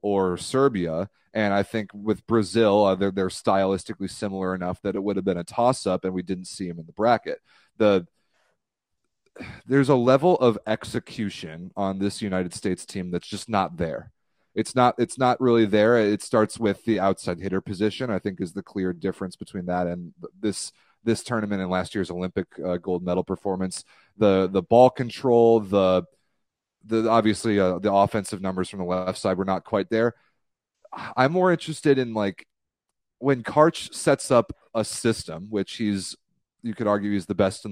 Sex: male